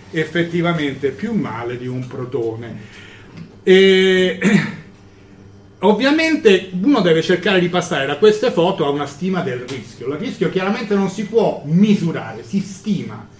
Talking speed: 135 wpm